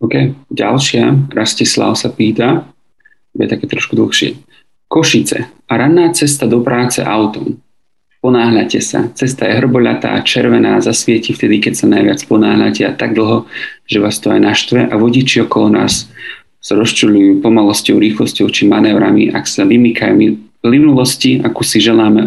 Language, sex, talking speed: Slovak, male, 145 wpm